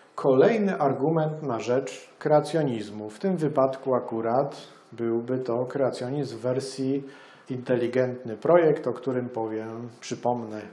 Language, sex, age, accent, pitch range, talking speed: Polish, male, 40-59, native, 120-150 Hz, 110 wpm